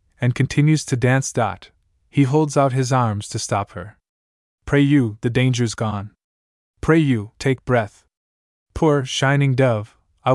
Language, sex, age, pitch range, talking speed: English, male, 20-39, 100-140 Hz, 150 wpm